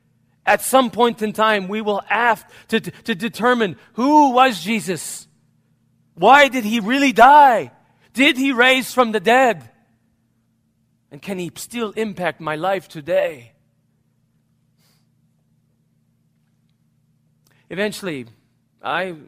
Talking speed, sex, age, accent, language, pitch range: 110 wpm, male, 40-59, American, English, 135-190 Hz